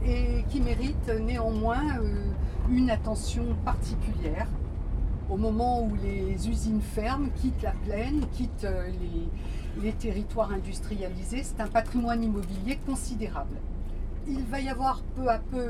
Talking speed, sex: 125 wpm, female